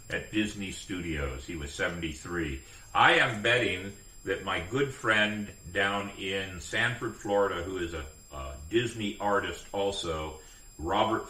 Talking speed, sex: 135 wpm, male